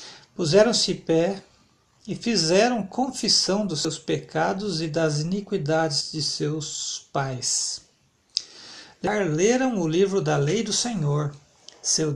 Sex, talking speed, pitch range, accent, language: male, 115 wpm, 155-205 Hz, Brazilian, Portuguese